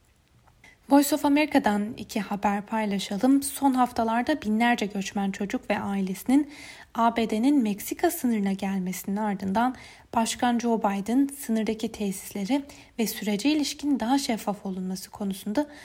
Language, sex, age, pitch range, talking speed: Turkish, female, 10-29, 205-265 Hz, 110 wpm